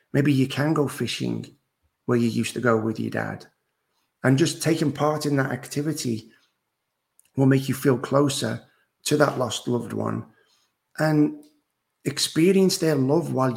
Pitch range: 120-150 Hz